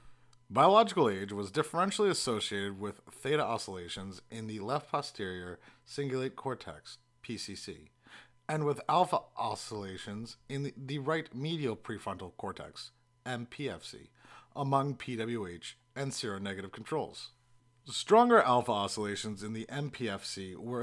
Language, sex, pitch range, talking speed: English, male, 110-145 Hz, 110 wpm